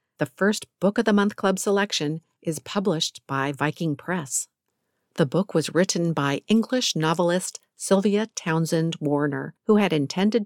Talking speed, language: 150 wpm, English